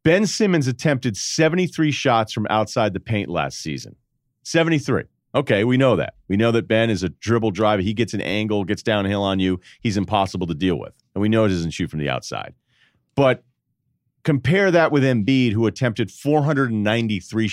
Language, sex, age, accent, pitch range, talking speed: English, male, 40-59, American, 105-145 Hz, 185 wpm